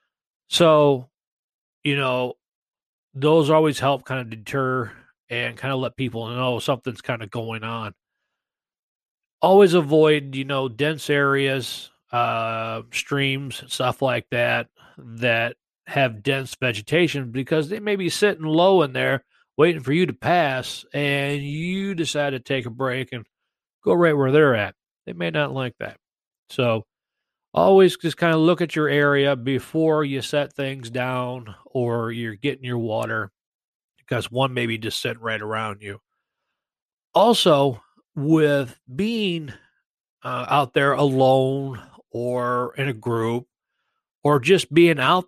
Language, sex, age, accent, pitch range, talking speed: English, male, 40-59, American, 120-145 Hz, 145 wpm